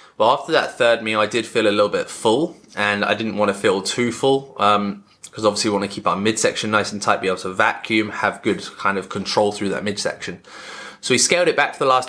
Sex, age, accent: male, 20-39, British